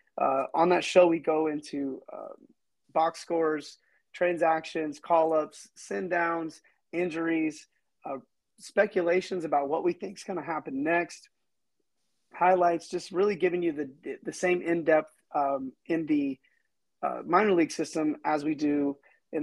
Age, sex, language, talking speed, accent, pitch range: 30-49, male, English, 140 wpm, American, 150-175 Hz